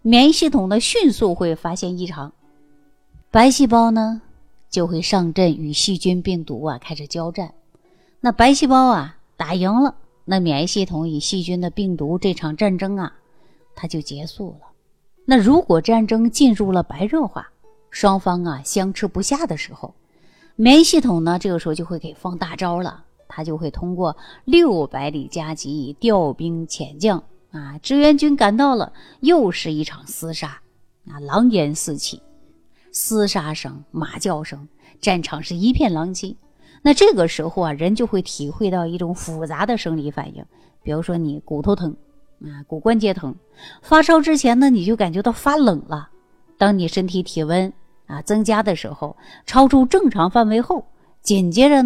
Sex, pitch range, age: female, 160-235 Hz, 30-49